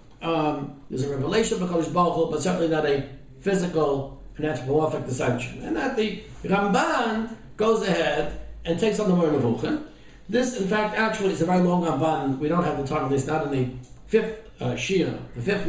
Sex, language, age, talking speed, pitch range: male, English, 60-79, 190 wpm, 145-210 Hz